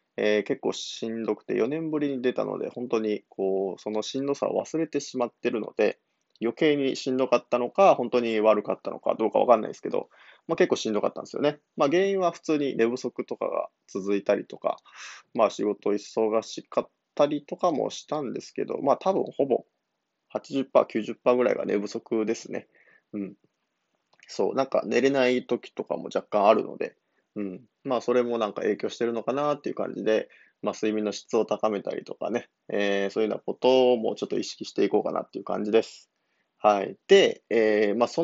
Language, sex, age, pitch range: Japanese, male, 20-39, 110-145 Hz